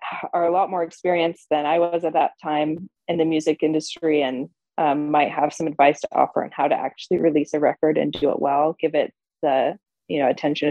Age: 20-39